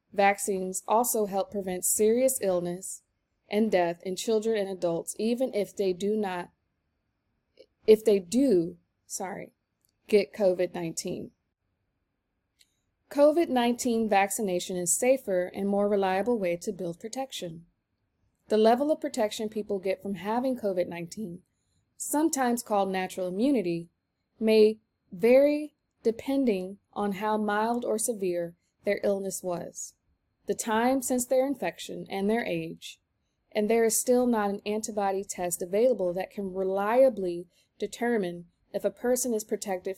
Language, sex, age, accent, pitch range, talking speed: English, female, 20-39, American, 180-225 Hz, 125 wpm